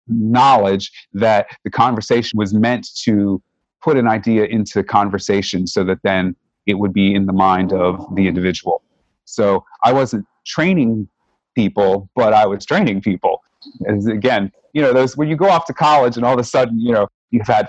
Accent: American